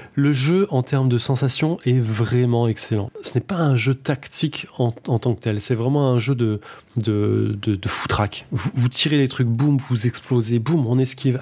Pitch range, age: 120-140 Hz, 20-39